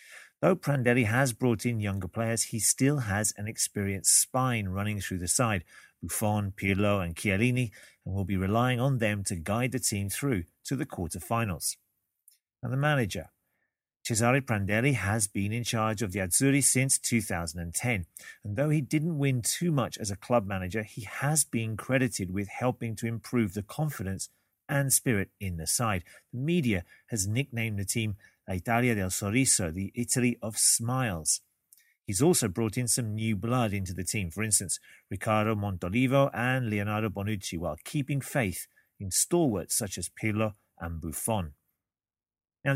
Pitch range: 100-125 Hz